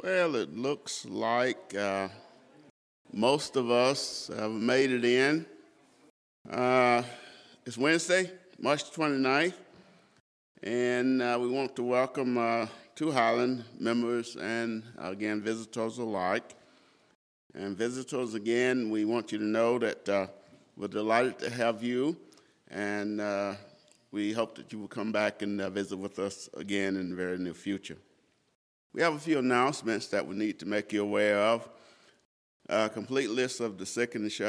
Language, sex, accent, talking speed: English, male, American, 150 wpm